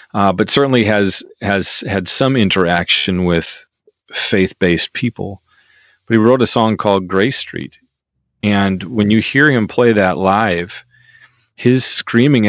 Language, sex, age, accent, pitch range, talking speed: English, male, 40-59, American, 95-115 Hz, 140 wpm